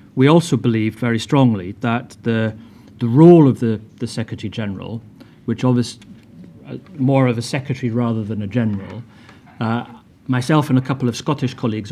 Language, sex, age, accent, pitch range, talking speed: English, male, 40-59, British, 110-125 Hz, 160 wpm